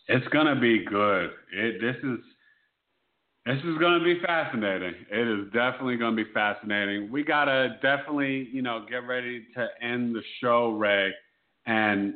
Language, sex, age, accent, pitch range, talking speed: English, male, 40-59, American, 100-120 Hz, 175 wpm